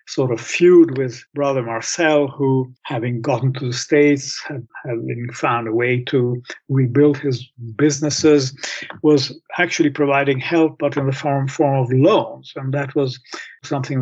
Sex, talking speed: male, 150 wpm